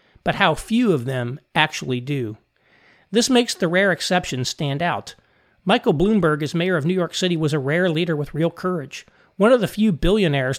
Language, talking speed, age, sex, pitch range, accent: English, 195 wpm, 40-59, male, 150-185 Hz, American